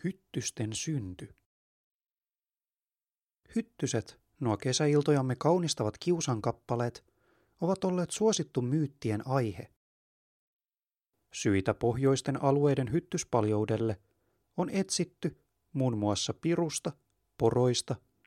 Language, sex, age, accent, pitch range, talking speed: Finnish, male, 30-49, native, 115-150 Hz, 70 wpm